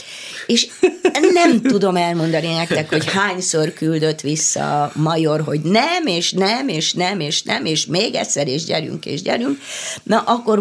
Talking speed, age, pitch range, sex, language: 155 wpm, 30-49, 160-210 Hz, female, Hungarian